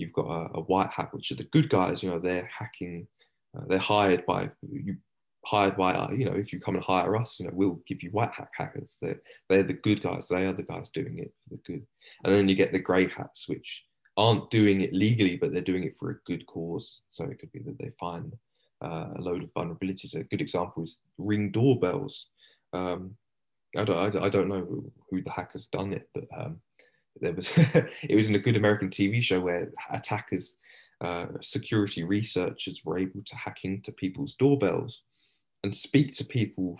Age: 20-39